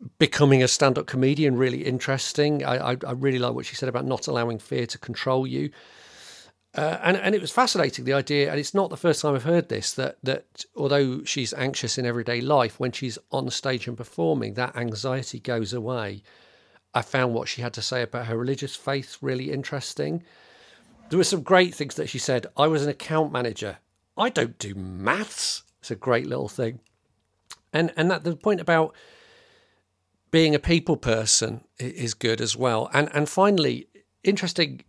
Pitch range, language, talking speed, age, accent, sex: 120-155 Hz, English, 185 wpm, 40-59, British, male